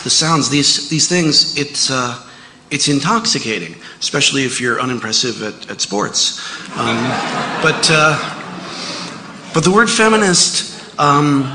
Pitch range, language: 130-160 Hz, English